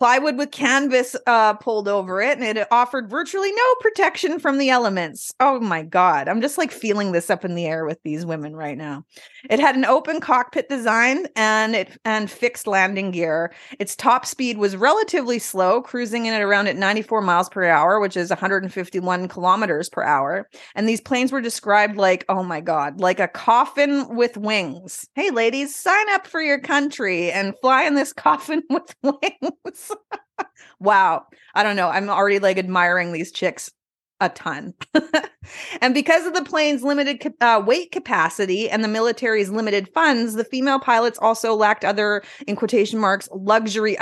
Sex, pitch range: female, 195-280 Hz